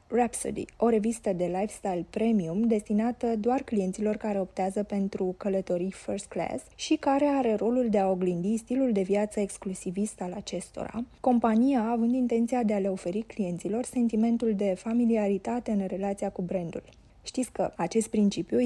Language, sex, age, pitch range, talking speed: Romanian, female, 20-39, 200-240 Hz, 150 wpm